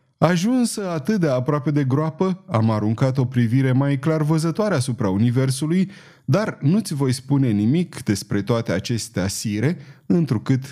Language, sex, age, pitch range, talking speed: Romanian, male, 30-49, 110-155 Hz, 140 wpm